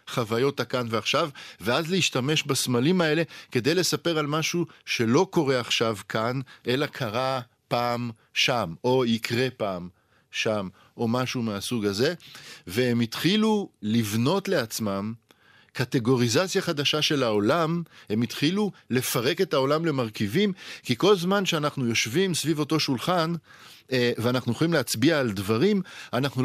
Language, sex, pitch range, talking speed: Hebrew, male, 115-160 Hz, 125 wpm